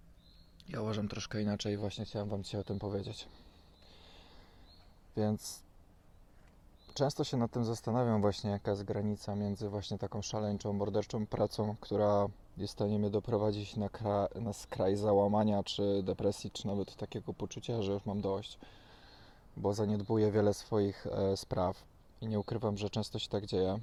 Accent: native